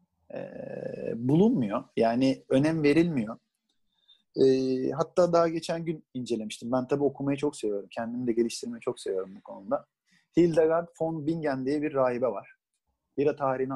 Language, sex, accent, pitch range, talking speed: Turkish, male, native, 125-165 Hz, 140 wpm